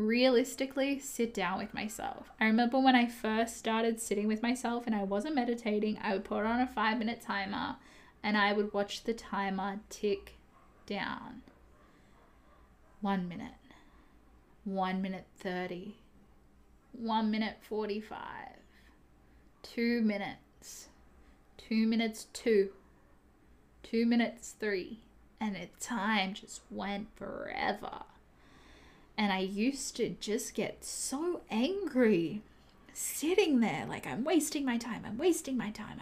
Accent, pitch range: Australian, 205-250 Hz